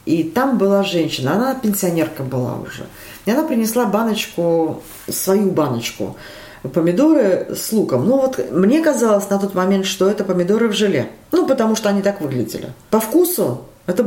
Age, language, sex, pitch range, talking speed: 40-59, Russian, female, 165-225 Hz, 165 wpm